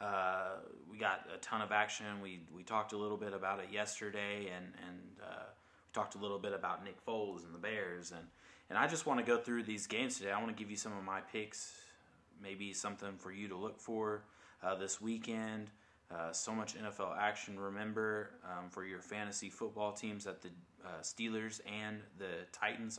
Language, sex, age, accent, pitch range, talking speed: English, male, 20-39, American, 90-105 Hz, 205 wpm